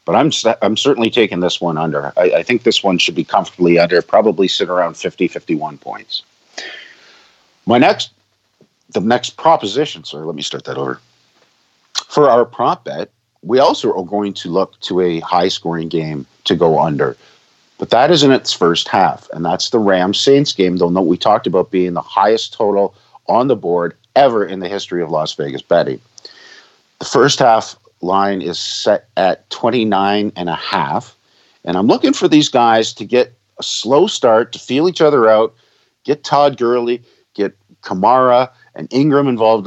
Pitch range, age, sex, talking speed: 85-120 Hz, 50-69, male, 175 wpm